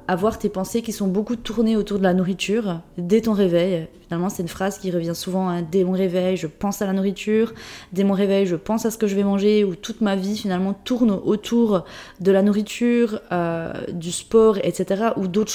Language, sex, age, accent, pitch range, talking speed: French, female, 20-39, French, 180-215 Hz, 220 wpm